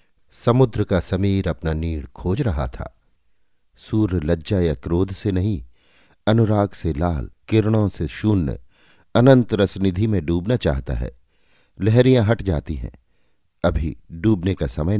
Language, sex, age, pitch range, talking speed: Hindi, male, 50-69, 85-115 Hz, 135 wpm